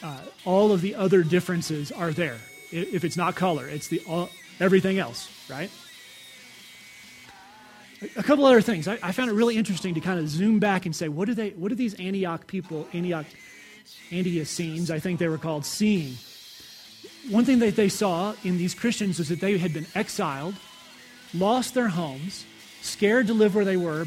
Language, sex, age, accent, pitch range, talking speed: English, male, 30-49, American, 170-220 Hz, 180 wpm